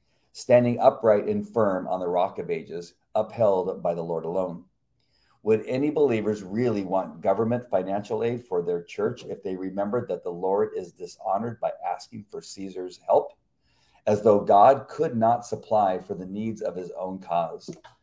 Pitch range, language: 95-125 Hz, English